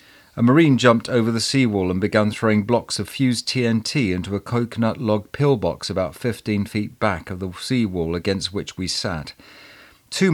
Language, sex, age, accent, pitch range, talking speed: English, male, 40-59, British, 90-115 Hz, 175 wpm